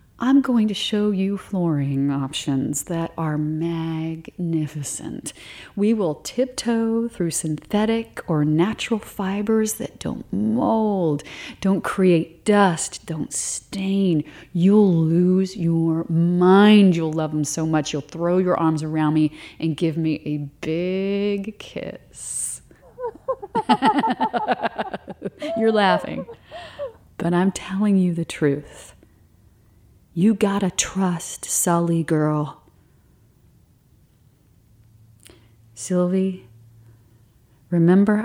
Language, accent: English, American